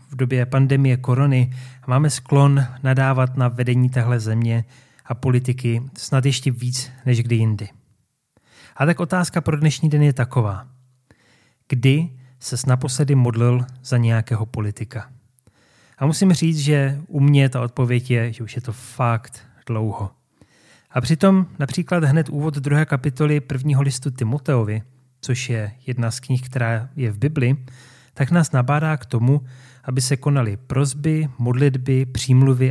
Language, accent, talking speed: Czech, native, 145 wpm